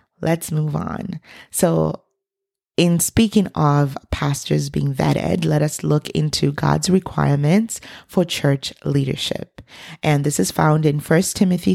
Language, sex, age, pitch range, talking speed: English, female, 30-49, 140-170 Hz, 135 wpm